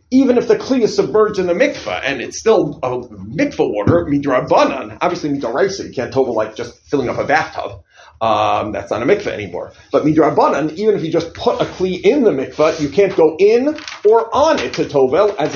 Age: 40-59